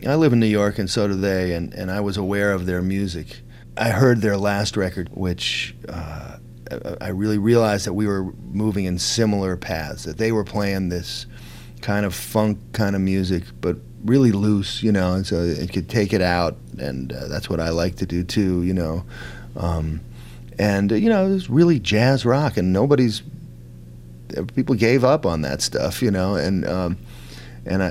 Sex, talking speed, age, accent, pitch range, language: male, 195 wpm, 40-59, American, 85-115 Hz, English